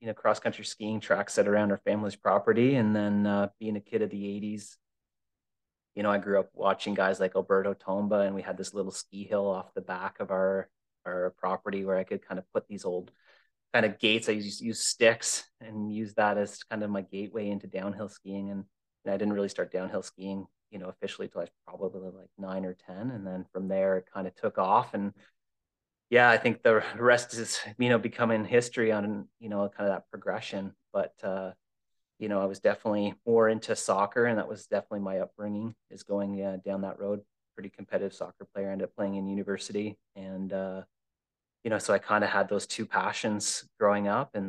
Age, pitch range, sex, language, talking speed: 30-49, 95-105 Hz, male, English, 220 wpm